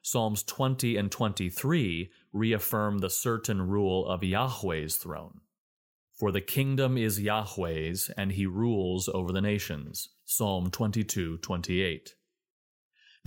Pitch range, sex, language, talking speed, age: 95-115 Hz, male, English, 110 wpm, 30-49